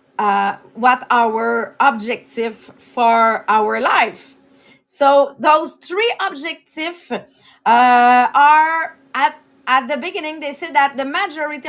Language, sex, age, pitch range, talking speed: English, female, 30-49, 230-290 Hz, 115 wpm